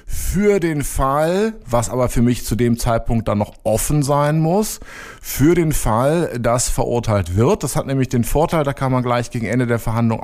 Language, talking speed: German, 200 wpm